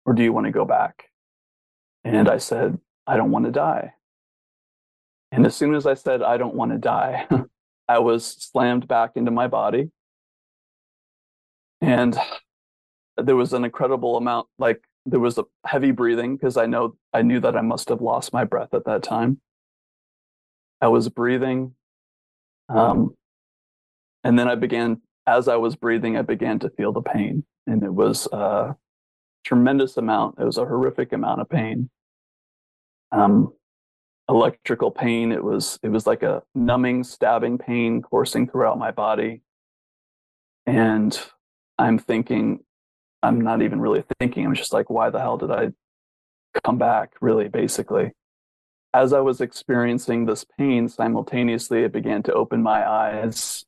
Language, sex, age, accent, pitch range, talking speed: English, male, 30-49, American, 105-125 Hz, 155 wpm